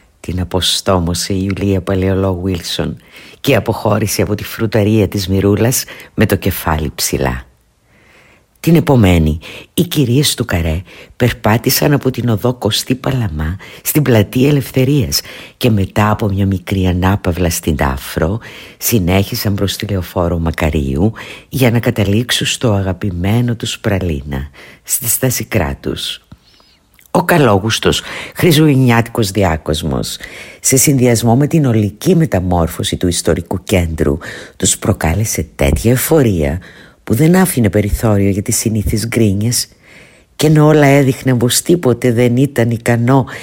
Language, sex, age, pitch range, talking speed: Greek, female, 50-69, 95-125 Hz, 125 wpm